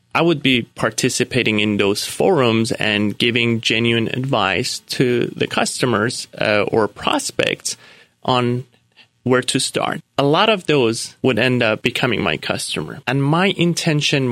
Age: 30-49